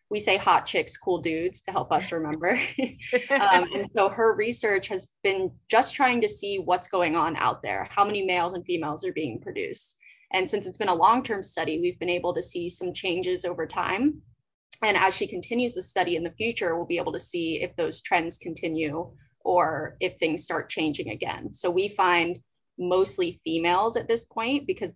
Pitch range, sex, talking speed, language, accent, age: 170-215 Hz, female, 200 wpm, English, American, 20-39